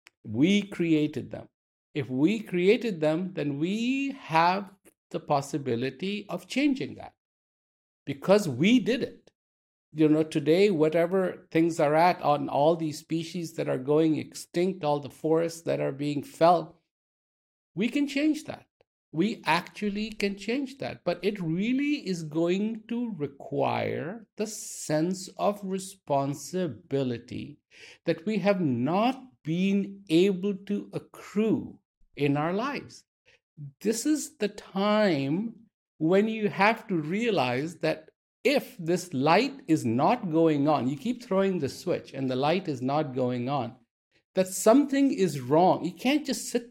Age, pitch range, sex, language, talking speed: 60-79, 150-205 Hz, male, English, 140 wpm